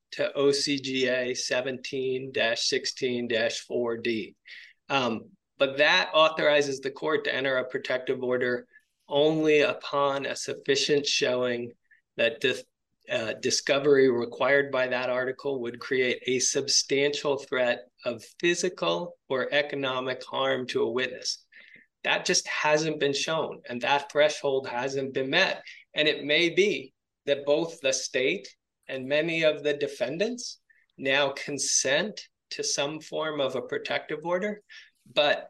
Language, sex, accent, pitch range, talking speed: English, male, American, 130-160 Hz, 120 wpm